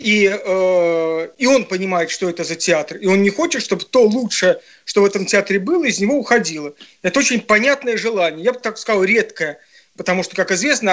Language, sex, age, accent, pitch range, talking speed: Russian, male, 40-59, native, 180-225 Hz, 205 wpm